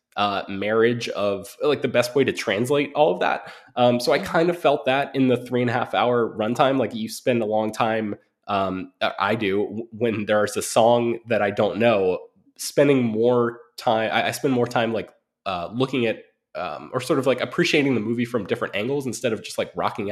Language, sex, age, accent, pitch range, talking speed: English, male, 20-39, American, 110-135 Hz, 210 wpm